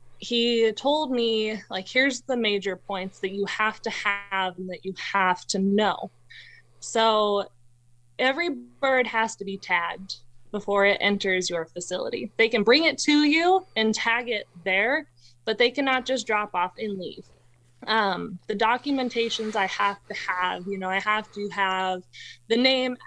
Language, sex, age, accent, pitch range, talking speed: English, female, 20-39, American, 190-230 Hz, 165 wpm